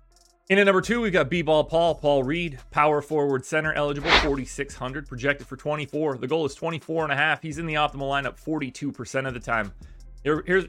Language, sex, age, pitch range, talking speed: English, male, 30-49, 120-175 Hz, 195 wpm